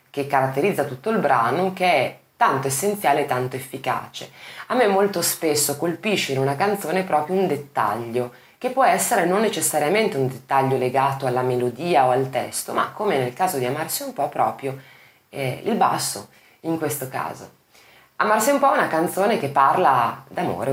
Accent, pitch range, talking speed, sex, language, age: native, 130-190 Hz, 175 wpm, female, Italian, 20-39